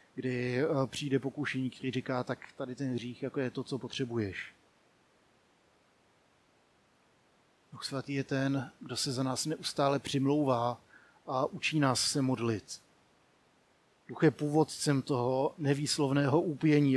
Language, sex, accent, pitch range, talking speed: Czech, male, native, 130-145 Hz, 125 wpm